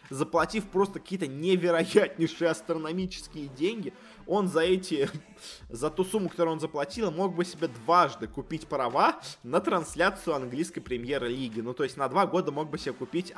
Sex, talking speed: male, 160 wpm